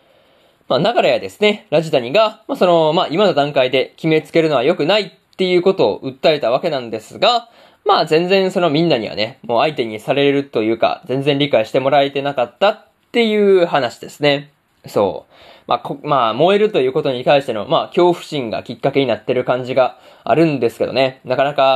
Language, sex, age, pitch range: Japanese, male, 20-39, 135-195 Hz